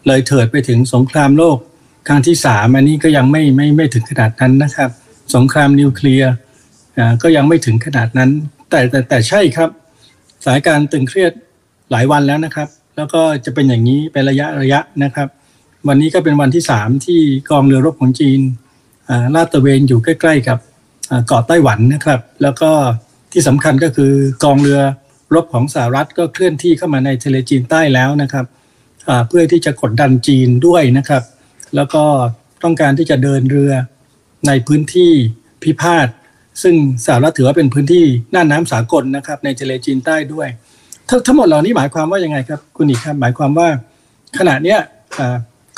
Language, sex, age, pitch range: Thai, male, 60-79, 130-150 Hz